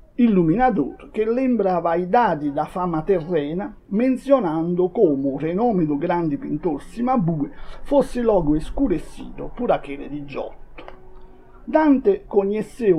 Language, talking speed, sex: Portuguese, 115 wpm, male